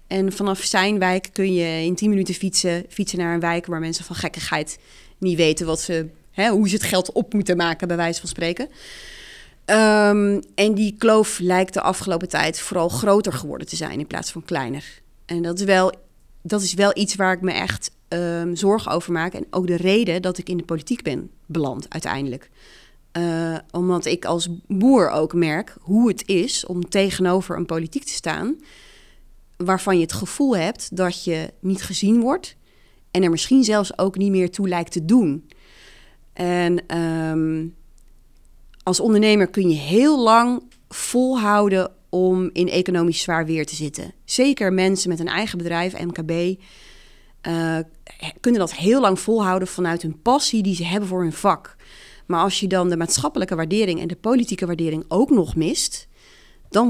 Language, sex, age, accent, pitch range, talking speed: Dutch, female, 30-49, Dutch, 170-205 Hz, 170 wpm